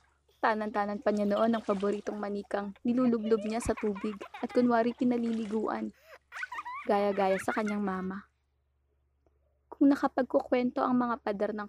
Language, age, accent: Filipino, 20-39, native